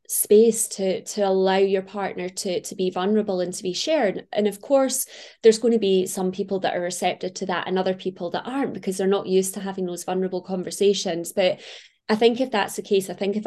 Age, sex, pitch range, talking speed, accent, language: 20-39, female, 185-210 Hz, 230 wpm, British, English